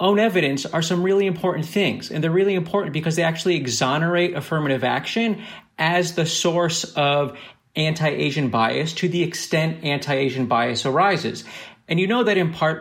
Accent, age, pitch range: American, 40-59, 140-175 Hz